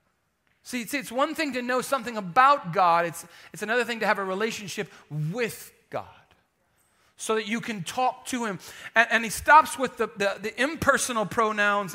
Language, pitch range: English, 145-210 Hz